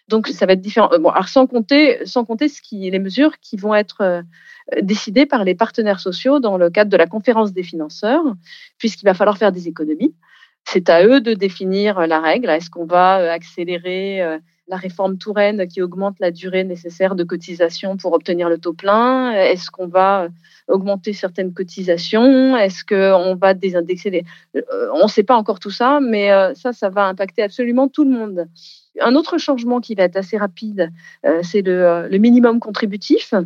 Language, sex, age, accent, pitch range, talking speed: French, female, 30-49, French, 185-225 Hz, 190 wpm